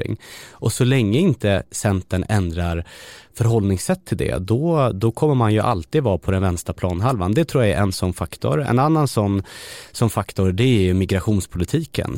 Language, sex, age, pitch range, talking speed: Swedish, male, 30-49, 95-120 Hz, 175 wpm